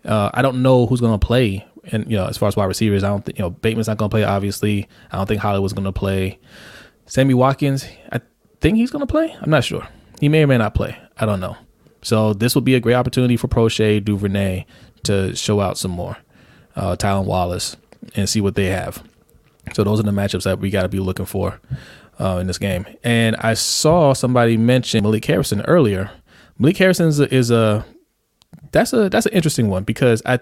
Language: English